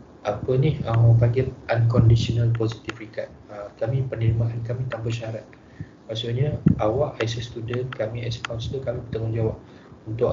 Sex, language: male, Malay